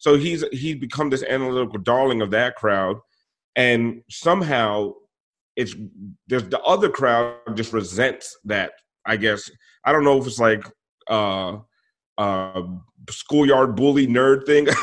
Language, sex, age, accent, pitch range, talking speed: English, male, 30-49, American, 115-140 Hz, 140 wpm